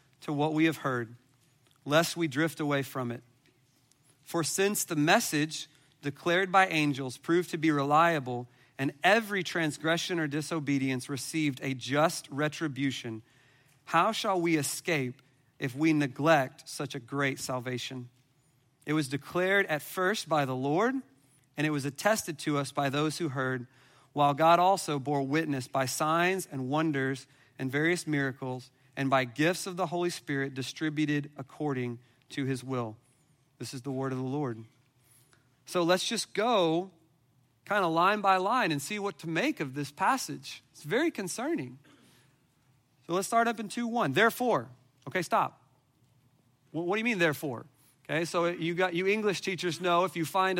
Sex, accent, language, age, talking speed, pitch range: male, American, English, 40-59, 160 wpm, 135-170 Hz